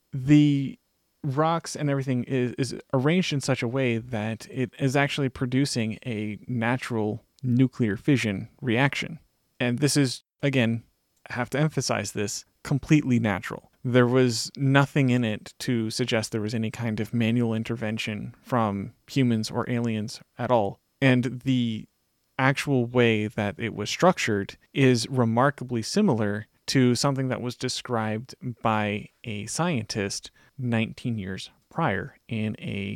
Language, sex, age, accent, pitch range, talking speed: English, male, 30-49, American, 110-135 Hz, 140 wpm